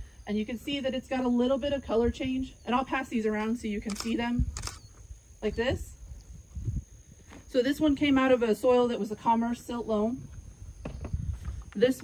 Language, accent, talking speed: English, American, 200 wpm